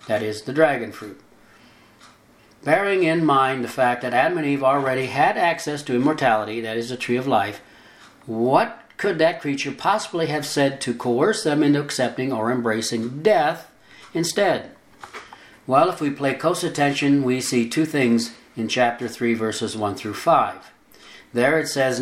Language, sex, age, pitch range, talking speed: English, male, 60-79, 120-160 Hz, 165 wpm